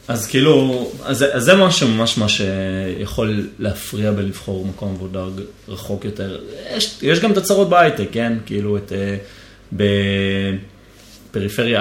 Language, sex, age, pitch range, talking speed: Hebrew, male, 20-39, 100-125 Hz, 125 wpm